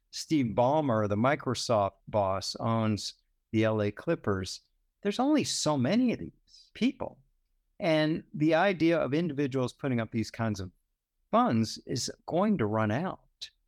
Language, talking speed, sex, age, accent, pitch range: English, 140 wpm, male, 50-69, American, 105-155 Hz